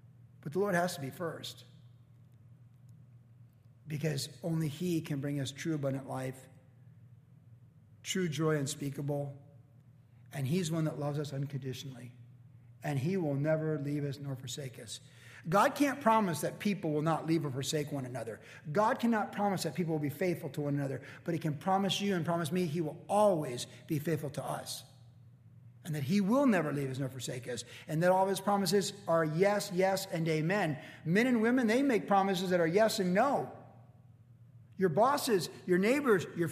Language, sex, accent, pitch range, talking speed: English, male, American, 130-180 Hz, 180 wpm